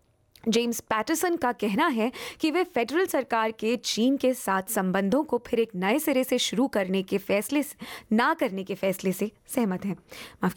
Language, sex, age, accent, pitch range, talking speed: Hindi, female, 20-39, native, 195-275 Hz, 185 wpm